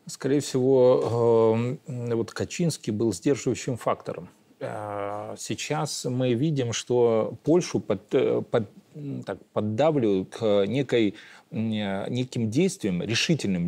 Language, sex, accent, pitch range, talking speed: Russian, male, native, 110-145 Hz, 90 wpm